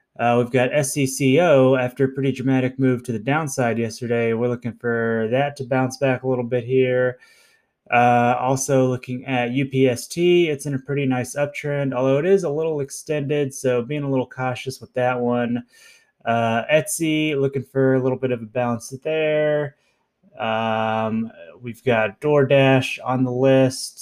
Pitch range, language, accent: 120-140 Hz, English, American